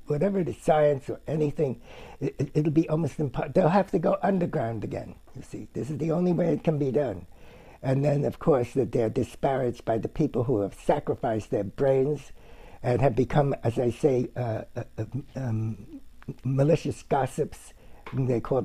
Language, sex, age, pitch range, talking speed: English, male, 60-79, 125-175 Hz, 185 wpm